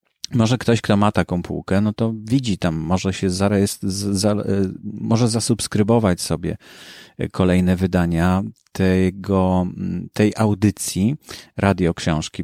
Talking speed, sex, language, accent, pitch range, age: 110 wpm, male, Polish, native, 95-115 Hz, 30-49